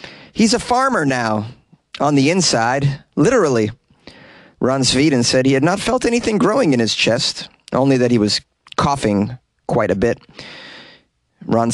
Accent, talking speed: American, 150 wpm